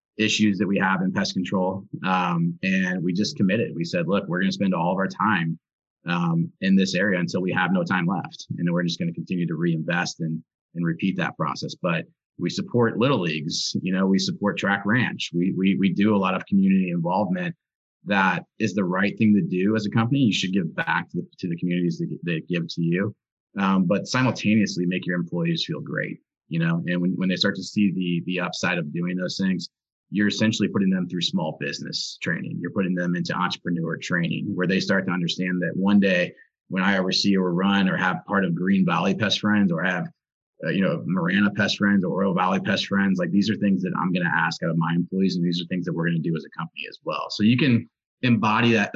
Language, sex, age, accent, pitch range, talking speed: English, male, 30-49, American, 90-115 Hz, 240 wpm